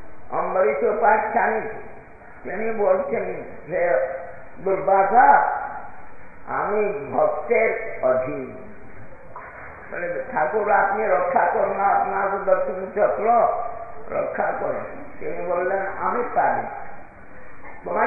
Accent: native